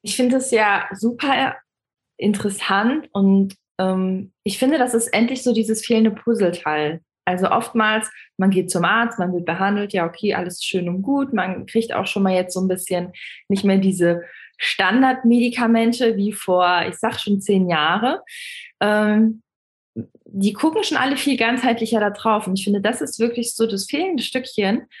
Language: German